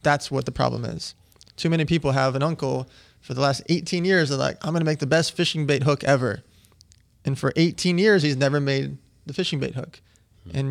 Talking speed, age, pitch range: 225 wpm, 20-39, 130-150 Hz